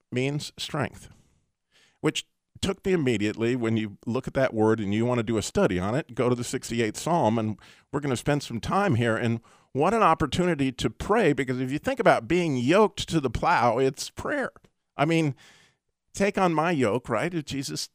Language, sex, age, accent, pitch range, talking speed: English, male, 50-69, American, 115-145 Hz, 200 wpm